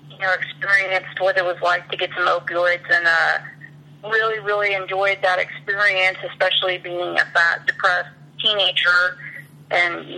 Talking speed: 155 wpm